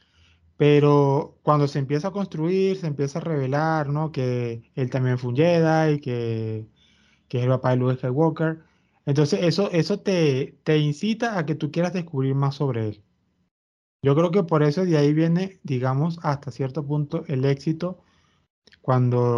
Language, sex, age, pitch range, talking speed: Spanish, male, 20-39, 130-170 Hz, 165 wpm